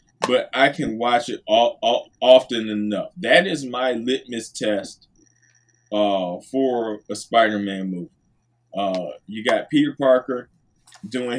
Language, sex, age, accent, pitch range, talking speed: English, male, 20-39, American, 105-125 Hz, 130 wpm